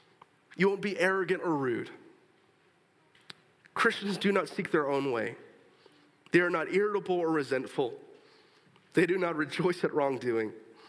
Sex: male